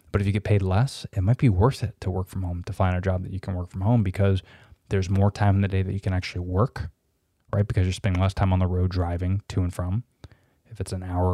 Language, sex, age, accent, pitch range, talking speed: English, male, 20-39, American, 95-110 Hz, 285 wpm